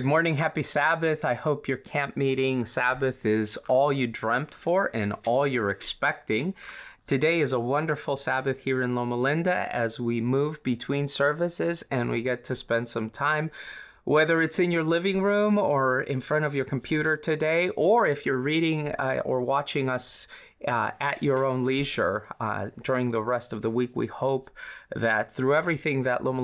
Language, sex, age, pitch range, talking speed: English, male, 20-39, 125-160 Hz, 175 wpm